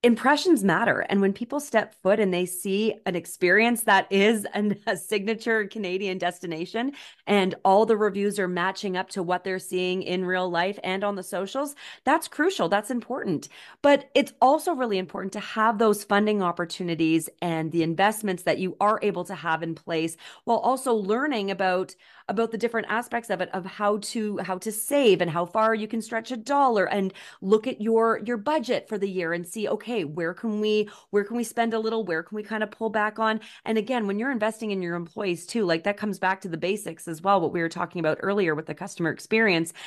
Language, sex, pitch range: English, female, 180-225 Hz